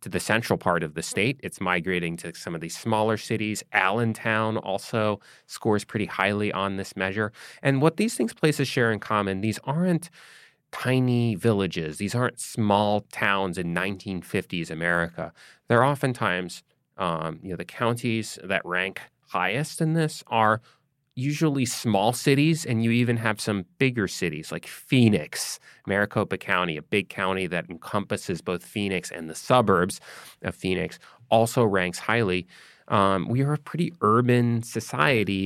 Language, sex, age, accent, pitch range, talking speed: English, male, 30-49, American, 90-120 Hz, 155 wpm